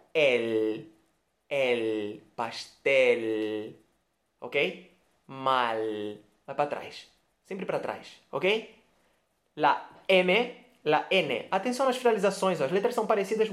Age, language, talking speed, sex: 20-39, Portuguese, 105 wpm, male